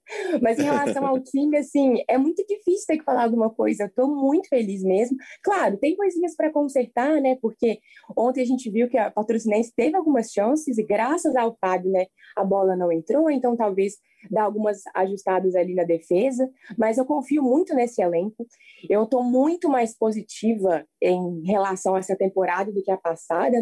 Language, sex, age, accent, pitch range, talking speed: Portuguese, female, 20-39, Brazilian, 195-265 Hz, 180 wpm